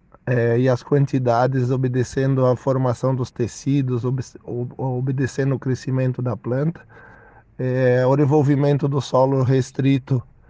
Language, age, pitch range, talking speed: Portuguese, 20-39, 125-135 Hz, 125 wpm